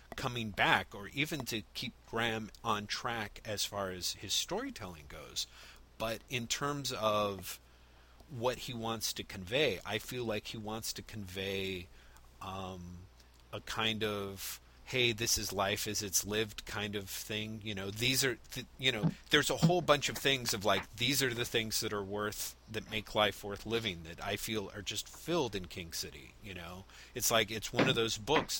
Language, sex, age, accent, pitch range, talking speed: English, male, 40-59, American, 90-115 Hz, 190 wpm